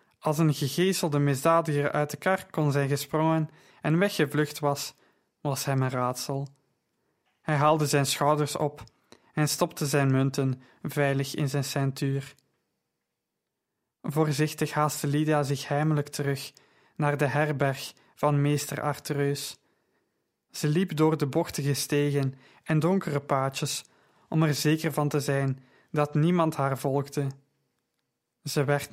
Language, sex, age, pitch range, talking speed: Dutch, male, 20-39, 135-155 Hz, 130 wpm